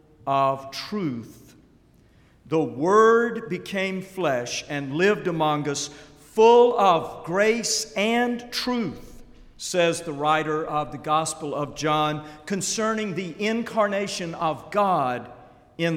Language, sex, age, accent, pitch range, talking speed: English, male, 50-69, American, 140-195 Hz, 110 wpm